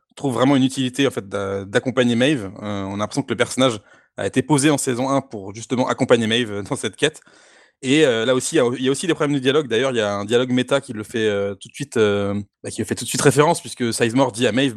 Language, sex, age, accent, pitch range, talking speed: French, male, 20-39, French, 105-135 Hz, 270 wpm